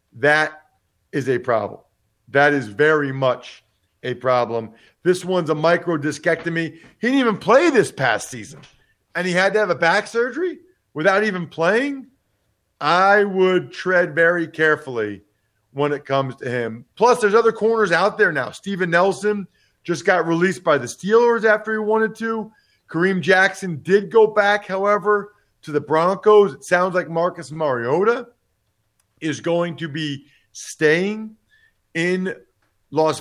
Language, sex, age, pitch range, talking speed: English, male, 40-59, 150-195 Hz, 150 wpm